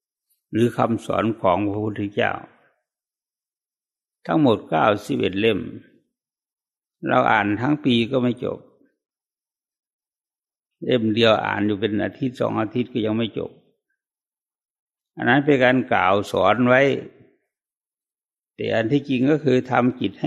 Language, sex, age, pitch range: English, male, 60-79, 110-145 Hz